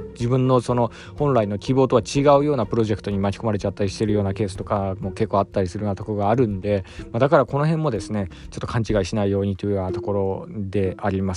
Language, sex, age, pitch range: Japanese, male, 20-39, 105-135 Hz